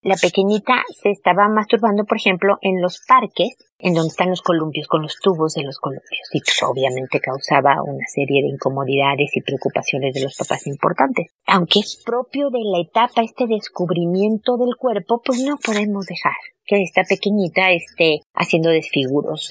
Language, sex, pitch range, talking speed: Spanish, female, 155-205 Hz, 165 wpm